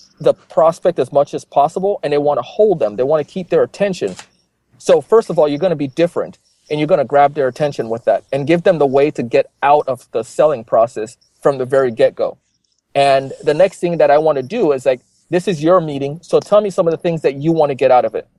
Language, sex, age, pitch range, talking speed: English, male, 30-49, 140-175 Hz, 270 wpm